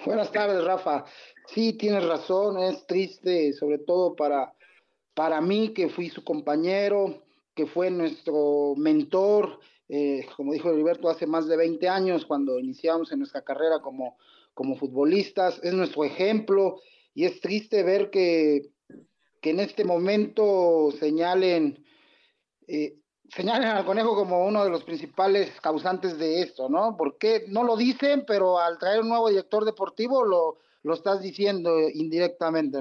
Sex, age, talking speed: male, 40-59, 145 wpm